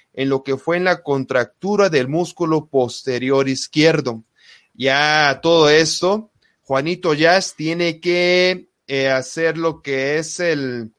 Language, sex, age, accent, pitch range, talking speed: Spanish, male, 30-49, Mexican, 140-175 Hz, 130 wpm